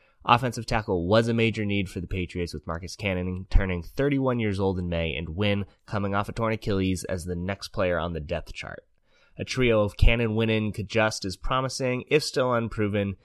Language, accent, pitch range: English, American, 90-110 Hz